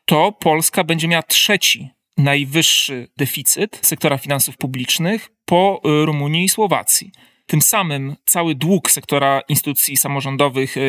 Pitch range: 135-165 Hz